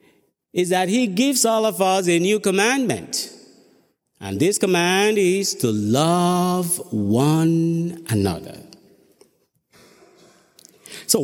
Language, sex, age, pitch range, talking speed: English, male, 50-69, 145-195 Hz, 100 wpm